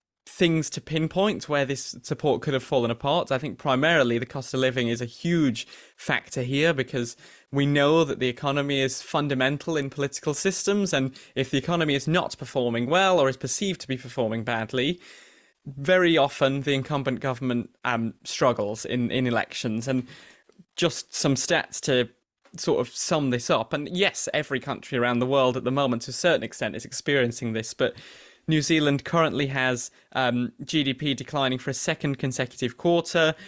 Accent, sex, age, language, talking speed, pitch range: British, male, 20-39, English, 175 wpm, 125-155 Hz